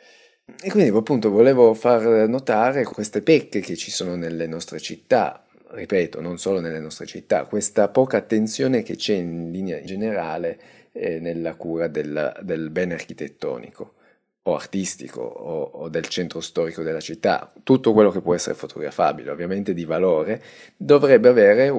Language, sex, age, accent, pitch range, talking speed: Italian, male, 30-49, native, 85-125 Hz, 150 wpm